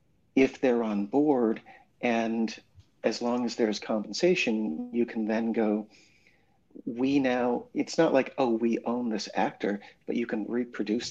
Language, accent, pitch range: English, American, 110-130 Hz